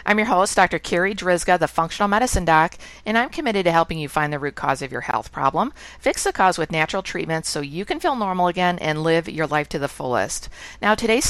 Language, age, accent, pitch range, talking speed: English, 50-69, American, 155-190 Hz, 240 wpm